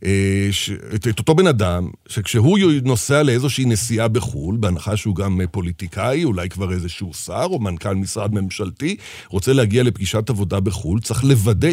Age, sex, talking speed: 50-69, male, 150 wpm